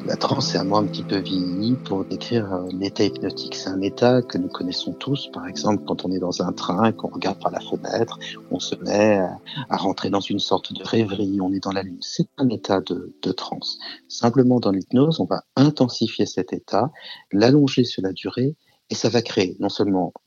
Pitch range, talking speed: 95-130 Hz, 215 wpm